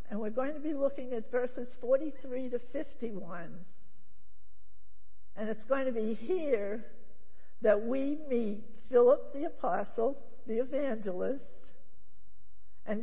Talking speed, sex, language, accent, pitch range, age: 120 wpm, female, English, American, 180-260 Hz, 60-79